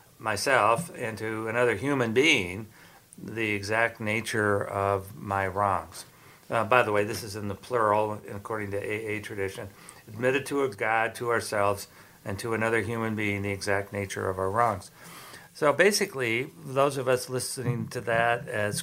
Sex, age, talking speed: male, 60-79, 165 wpm